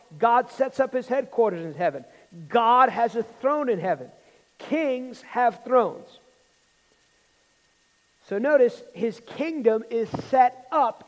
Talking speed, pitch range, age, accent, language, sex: 125 wpm, 225-275 Hz, 50-69, American, English, male